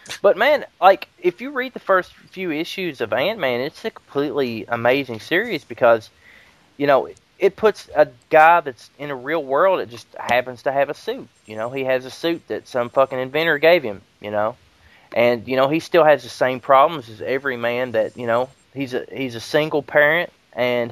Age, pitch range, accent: 20-39, 120-150 Hz, American